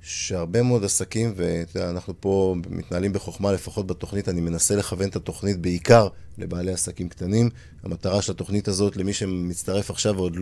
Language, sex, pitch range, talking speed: Hebrew, male, 90-105 Hz, 150 wpm